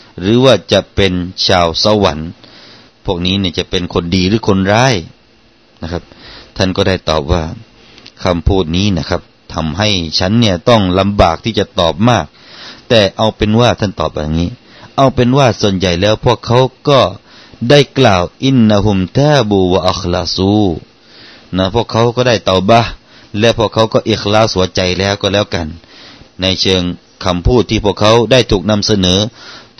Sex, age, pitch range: male, 30-49, 90-115 Hz